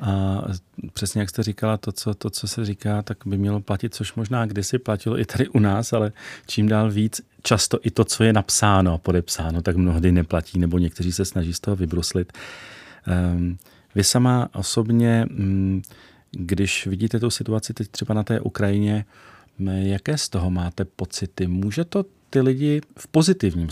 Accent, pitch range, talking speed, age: native, 95-110 Hz, 165 wpm, 40-59